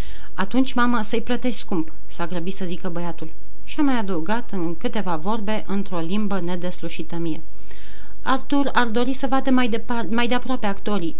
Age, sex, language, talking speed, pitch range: 30-49, female, Romanian, 155 wpm, 175-245 Hz